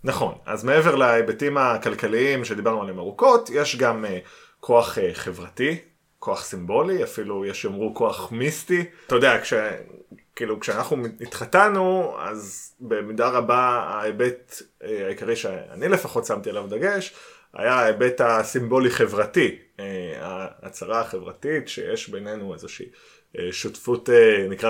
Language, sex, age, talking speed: Hebrew, male, 20-39, 110 wpm